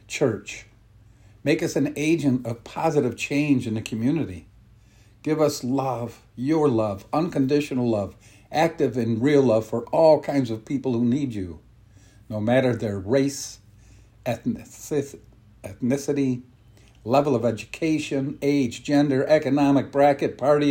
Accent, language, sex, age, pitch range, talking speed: American, English, male, 50-69, 105-135 Hz, 125 wpm